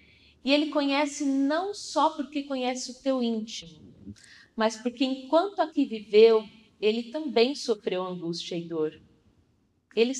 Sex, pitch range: female, 205-255 Hz